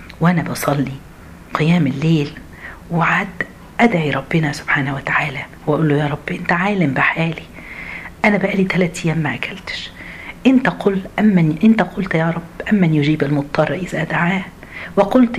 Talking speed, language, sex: 135 wpm, Arabic, female